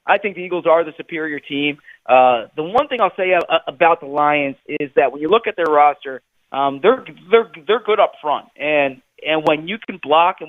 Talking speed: 225 wpm